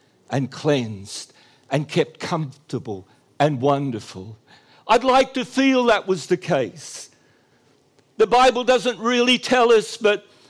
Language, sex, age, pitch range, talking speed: English, male, 60-79, 160-245 Hz, 125 wpm